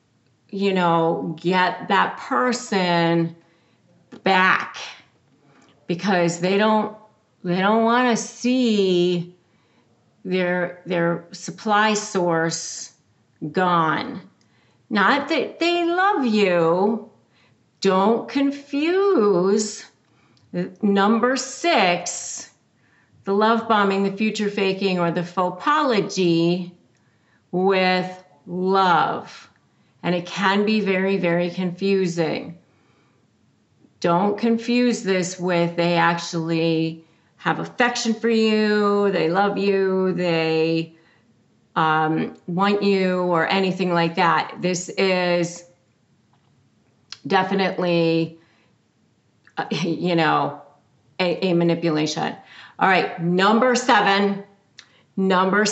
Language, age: English, 40-59